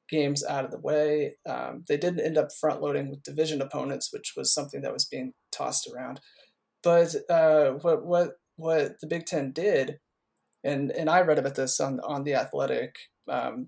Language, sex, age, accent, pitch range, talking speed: English, male, 30-49, American, 145-165 Hz, 190 wpm